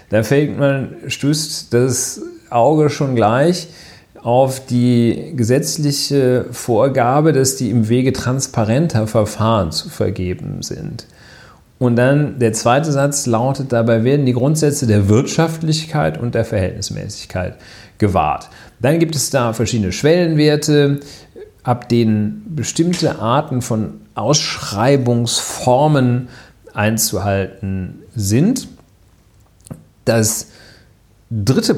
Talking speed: 100 wpm